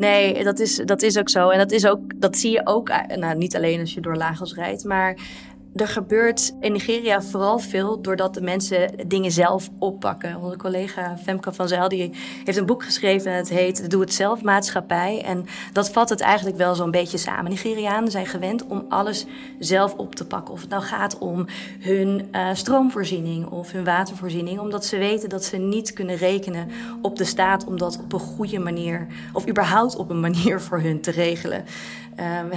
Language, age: Dutch, 20-39